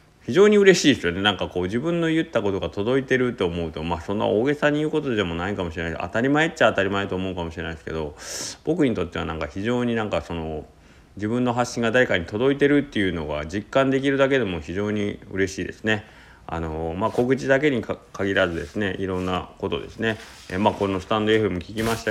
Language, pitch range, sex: Japanese, 85-110 Hz, male